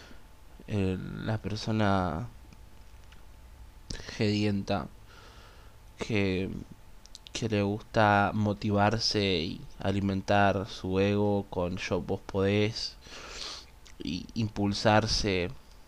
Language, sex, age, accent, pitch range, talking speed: English, male, 20-39, Argentinian, 100-115 Hz, 70 wpm